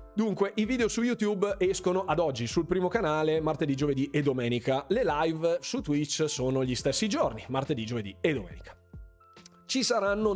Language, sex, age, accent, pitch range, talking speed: Italian, male, 30-49, native, 135-180 Hz, 170 wpm